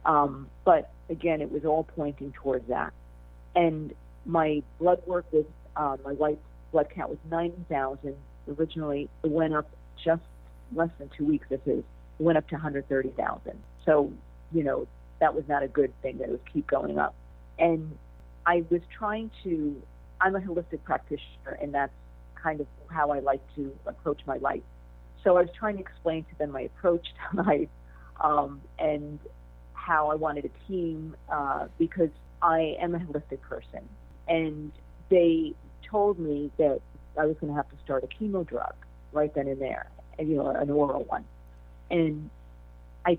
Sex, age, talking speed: female, 50-69, 170 wpm